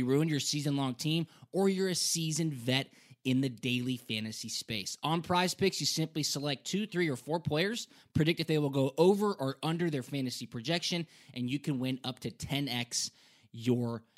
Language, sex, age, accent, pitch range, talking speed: English, male, 20-39, American, 130-170 Hz, 190 wpm